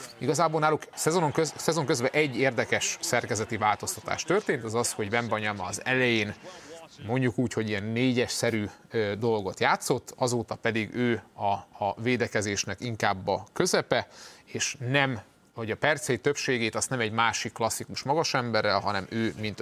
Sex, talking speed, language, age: male, 150 wpm, Hungarian, 30-49